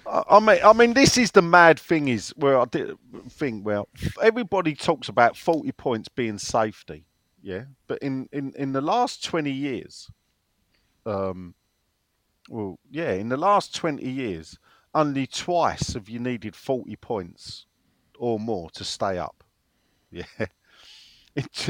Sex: male